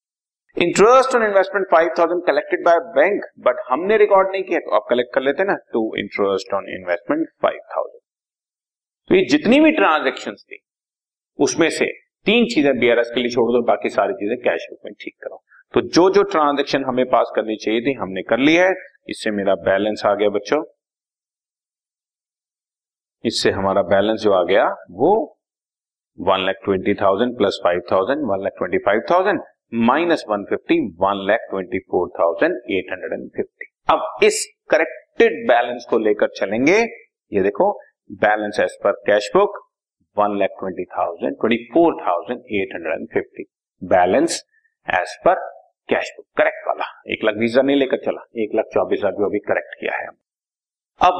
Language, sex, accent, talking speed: Hindi, male, native, 135 wpm